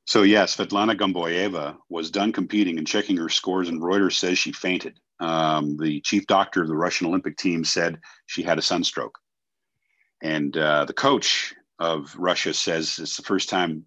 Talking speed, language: 180 wpm, English